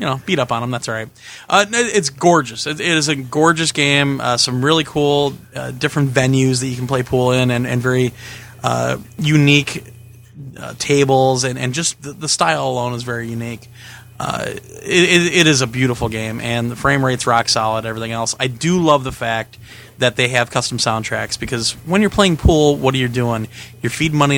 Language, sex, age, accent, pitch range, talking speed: English, male, 30-49, American, 120-150 Hz, 205 wpm